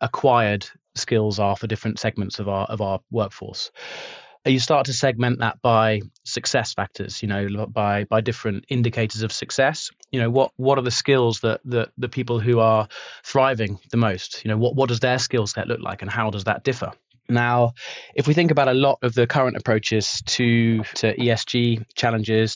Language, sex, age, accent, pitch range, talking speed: English, male, 30-49, British, 110-125 Hz, 195 wpm